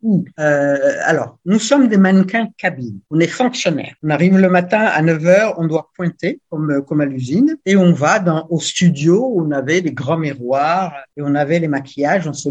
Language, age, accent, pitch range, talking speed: French, 50-69, French, 150-200 Hz, 205 wpm